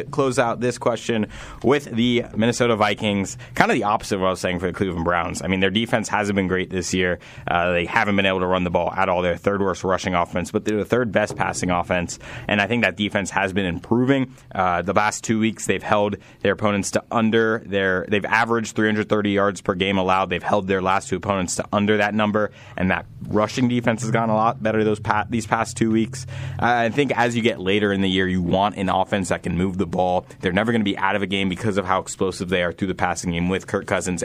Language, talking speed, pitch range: English, 250 wpm, 95-120 Hz